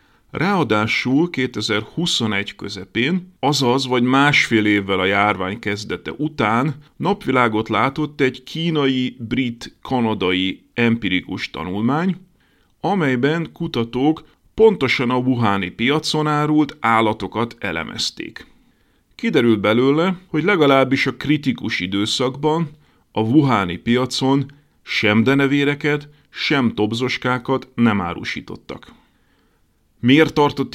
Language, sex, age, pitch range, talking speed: Hungarian, male, 40-59, 110-150 Hz, 85 wpm